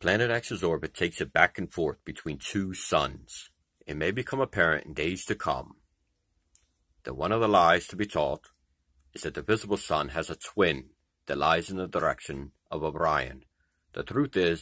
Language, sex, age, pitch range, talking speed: English, male, 60-79, 75-95 Hz, 185 wpm